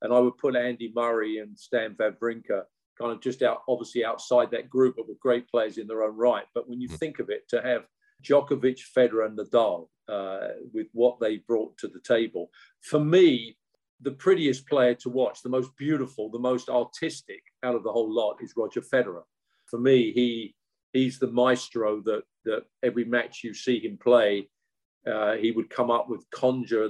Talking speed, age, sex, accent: 195 wpm, 50-69, male, British